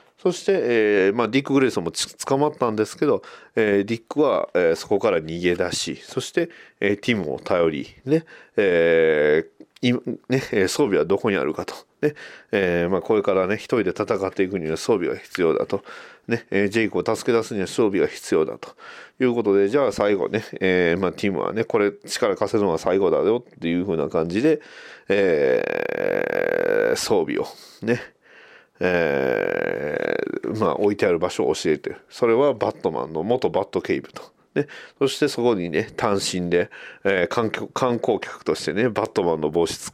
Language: Japanese